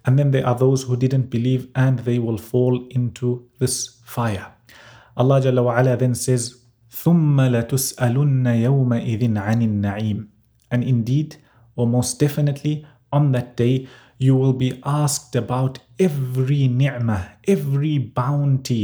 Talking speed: 125 wpm